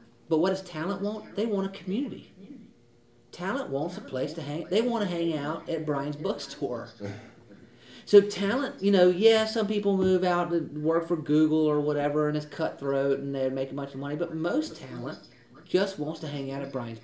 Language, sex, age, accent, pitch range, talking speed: English, male, 40-59, American, 130-175 Hz, 205 wpm